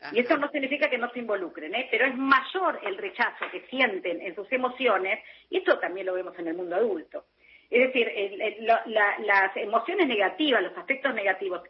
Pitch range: 180-285 Hz